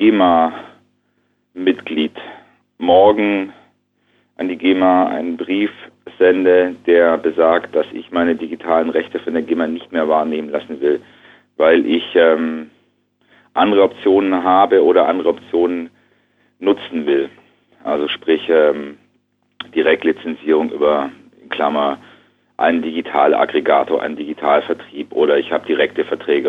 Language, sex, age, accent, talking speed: English, male, 40-59, German, 110 wpm